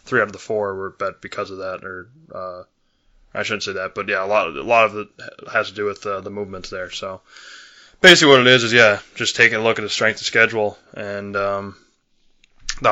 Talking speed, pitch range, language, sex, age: 240 wpm, 95-105 Hz, English, male, 20-39